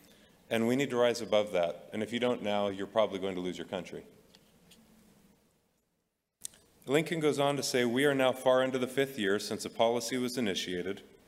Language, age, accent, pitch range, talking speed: English, 40-59, American, 100-130 Hz, 195 wpm